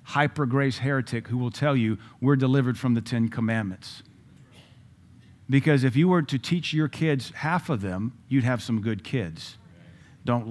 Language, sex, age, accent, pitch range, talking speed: English, male, 50-69, American, 120-170 Hz, 170 wpm